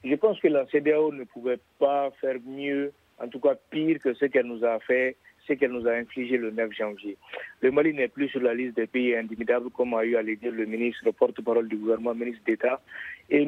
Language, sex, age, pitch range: French, male, 50-69, 115-140 Hz